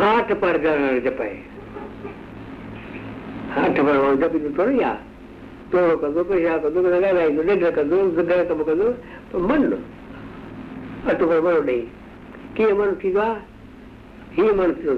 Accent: native